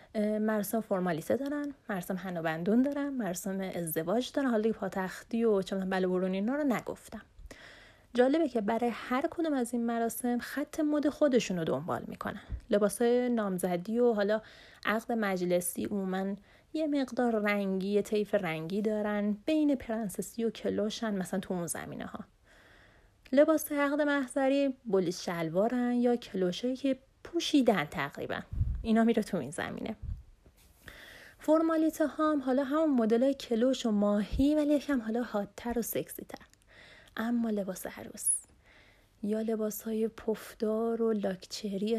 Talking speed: 135 wpm